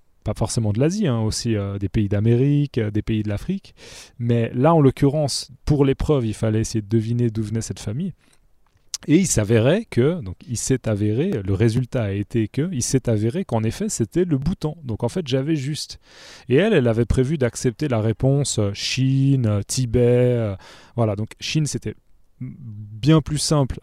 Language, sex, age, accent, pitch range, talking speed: French, male, 30-49, French, 110-140 Hz, 185 wpm